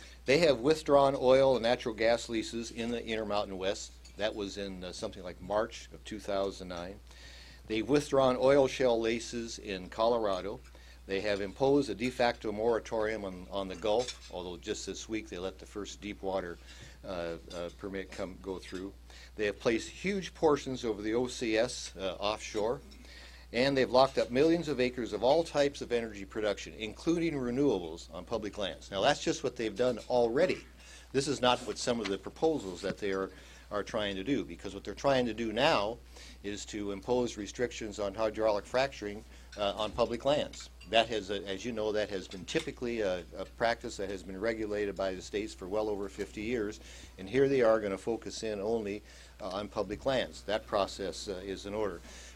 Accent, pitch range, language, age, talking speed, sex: American, 95-120 Hz, English, 60-79, 190 wpm, male